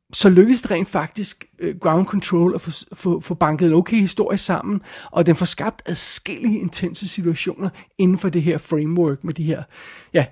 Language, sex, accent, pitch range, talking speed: Danish, male, native, 165-195 Hz, 185 wpm